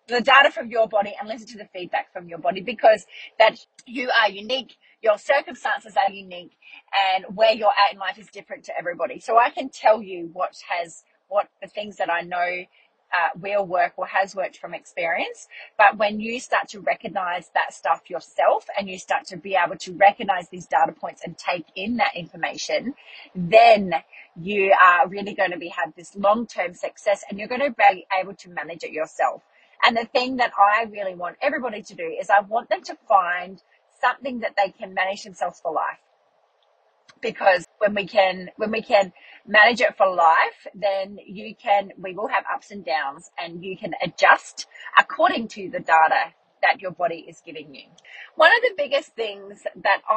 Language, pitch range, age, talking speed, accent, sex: English, 185-235 Hz, 30-49, 195 wpm, Australian, female